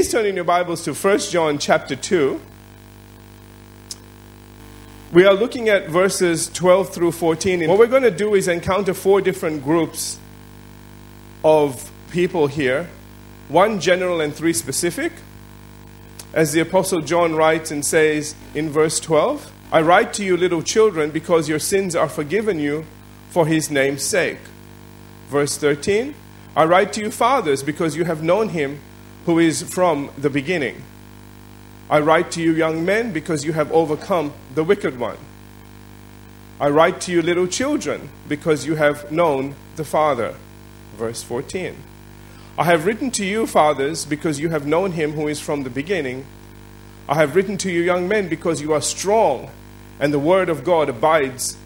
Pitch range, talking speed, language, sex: 110-170 Hz, 160 wpm, English, male